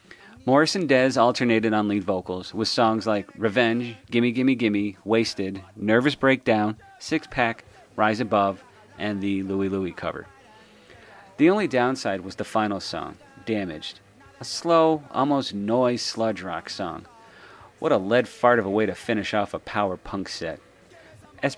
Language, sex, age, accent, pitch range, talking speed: English, male, 40-59, American, 100-130 Hz, 155 wpm